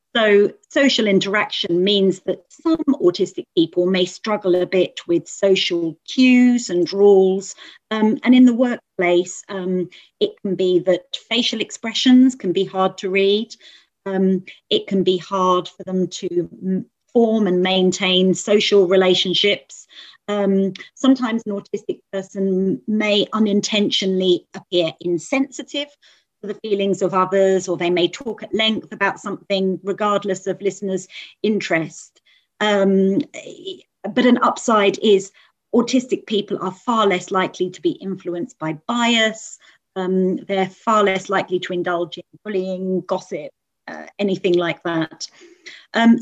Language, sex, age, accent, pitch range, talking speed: English, female, 40-59, British, 185-225 Hz, 135 wpm